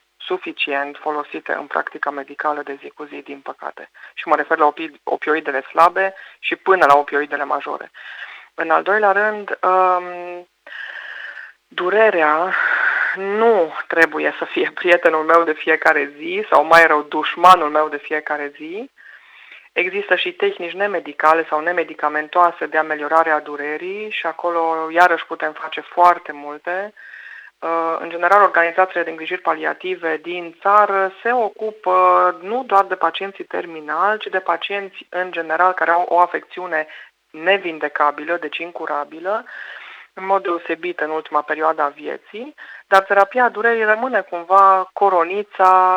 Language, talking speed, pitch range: Romanian, 135 wpm, 155-195 Hz